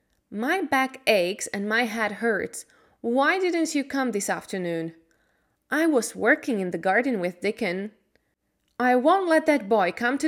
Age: 20-39